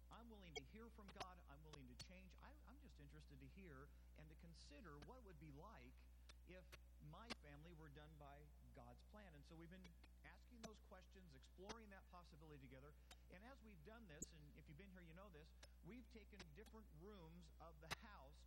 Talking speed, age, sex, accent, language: 200 wpm, 50-69, male, American, English